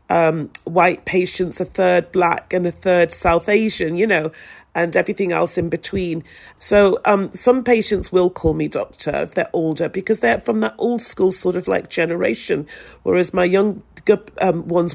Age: 40-59